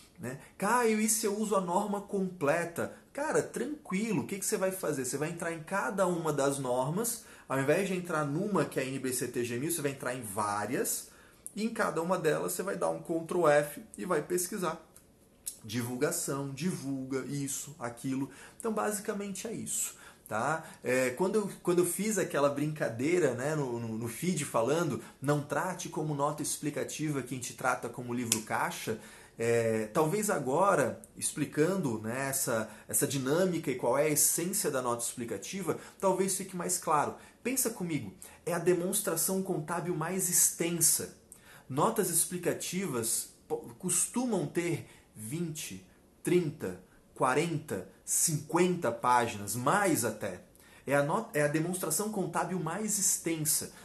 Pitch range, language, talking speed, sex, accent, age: 135-190 Hz, Portuguese, 145 wpm, male, Brazilian, 20-39